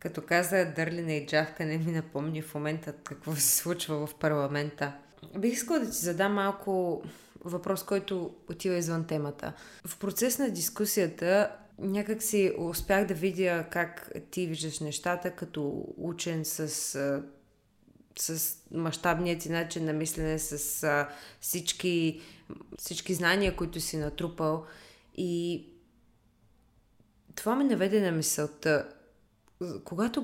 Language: Bulgarian